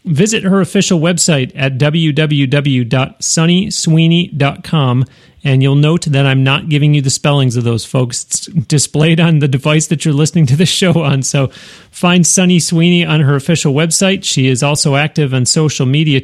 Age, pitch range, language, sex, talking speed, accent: 40-59, 140-170 Hz, English, male, 165 wpm, American